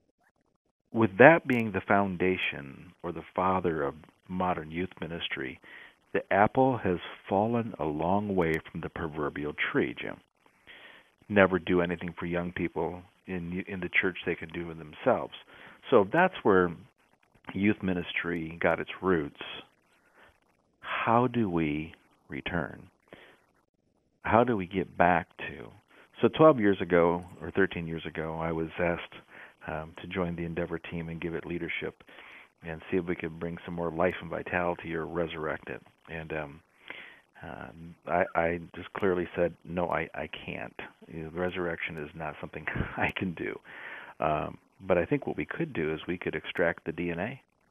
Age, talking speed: 50-69, 155 wpm